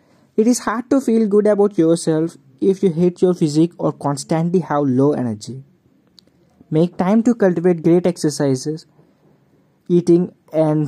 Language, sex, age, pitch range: English, male, 20-39, 140-185 Hz